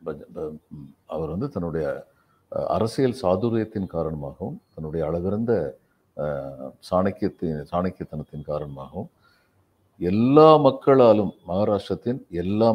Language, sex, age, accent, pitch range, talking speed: Tamil, male, 50-69, native, 85-110 Hz, 70 wpm